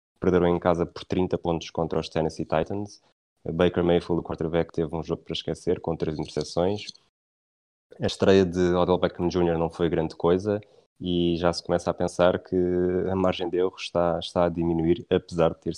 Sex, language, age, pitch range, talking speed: male, Portuguese, 20-39, 85-95 Hz, 190 wpm